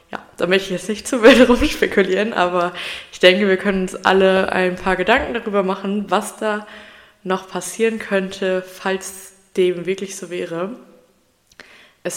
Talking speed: 155 wpm